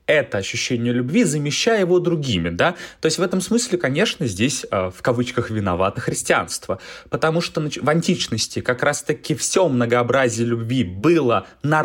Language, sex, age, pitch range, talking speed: Russian, male, 20-39, 120-160 Hz, 145 wpm